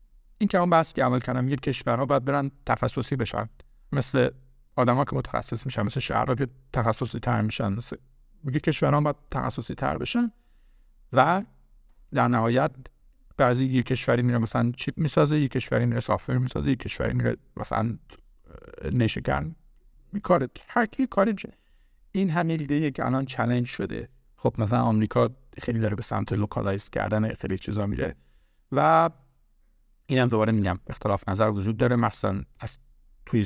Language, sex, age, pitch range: Persian, male, 50-69, 105-130 Hz